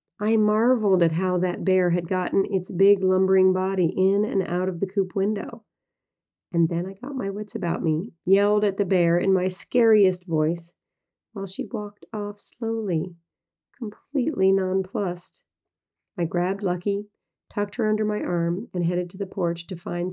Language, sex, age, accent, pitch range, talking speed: English, female, 40-59, American, 170-205 Hz, 170 wpm